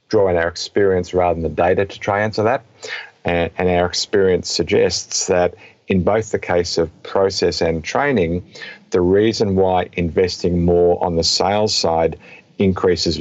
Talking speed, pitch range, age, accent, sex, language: 165 wpm, 85-105 Hz, 50-69, Australian, male, English